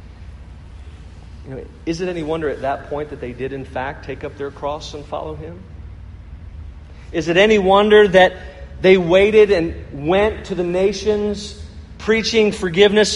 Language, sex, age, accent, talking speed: English, male, 40-59, American, 150 wpm